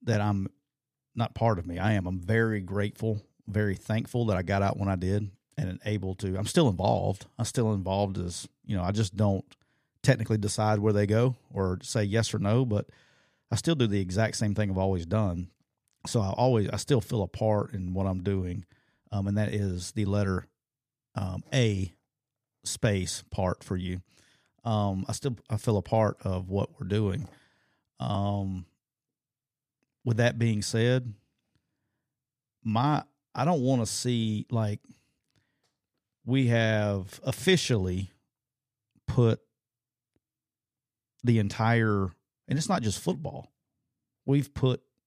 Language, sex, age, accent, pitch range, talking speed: English, male, 40-59, American, 100-125 Hz, 155 wpm